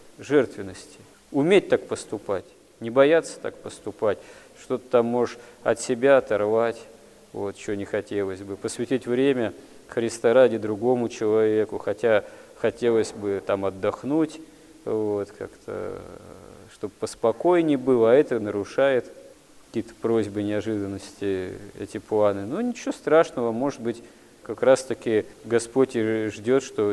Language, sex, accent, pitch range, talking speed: Russian, male, native, 105-130 Hz, 120 wpm